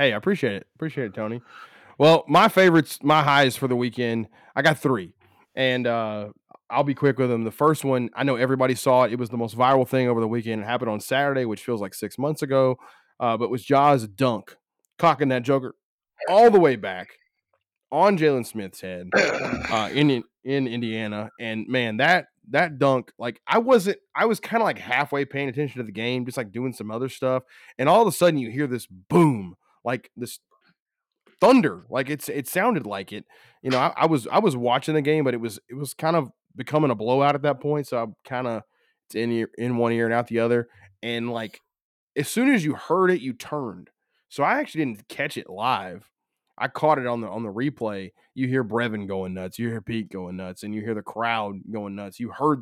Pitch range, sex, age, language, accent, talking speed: 115-145 Hz, male, 20-39, English, American, 220 wpm